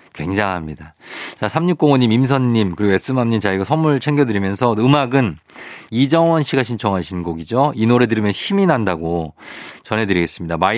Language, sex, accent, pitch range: Korean, male, native, 100-140 Hz